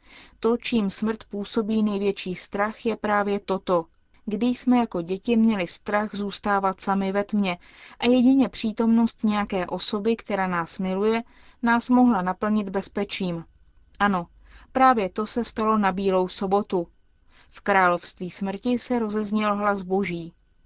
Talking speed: 135 wpm